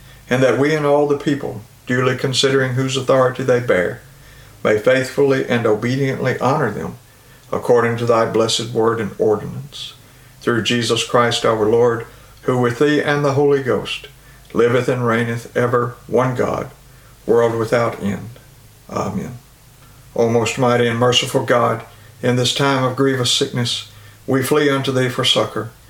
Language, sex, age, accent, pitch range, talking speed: English, male, 60-79, American, 115-135 Hz, 155 wpm